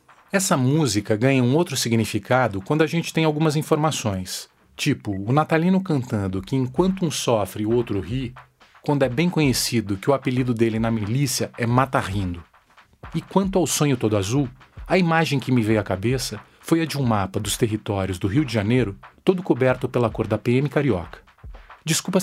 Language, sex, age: Portuguese, male, 40-59